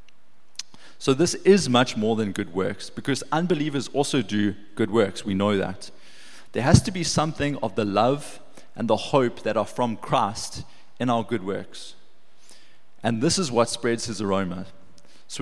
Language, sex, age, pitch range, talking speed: English, male, 20-39, 105-135 Hz, 170 wpm